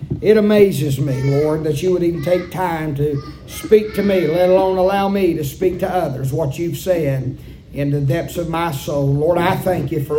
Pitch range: 165-215 Hz